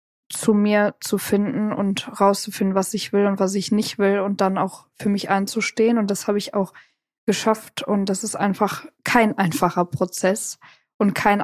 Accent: German